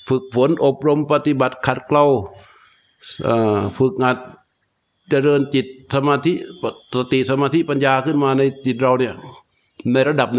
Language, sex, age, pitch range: Thai, male, 60-79, 130-160 Hz